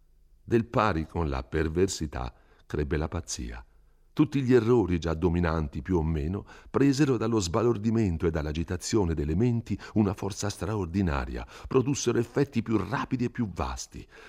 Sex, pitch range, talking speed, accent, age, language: male, 80-115 Hz, 140 wpm, native, 60-79, Italian